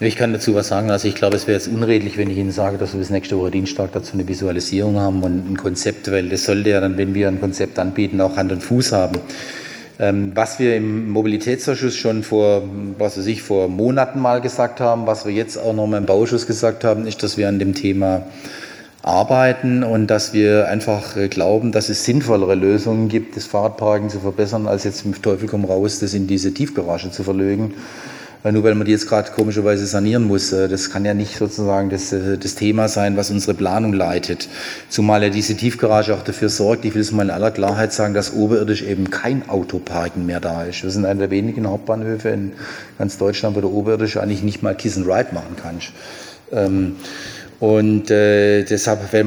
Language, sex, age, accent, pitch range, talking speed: German, male, 30-49, German, 95-110 Hz, 205 wpm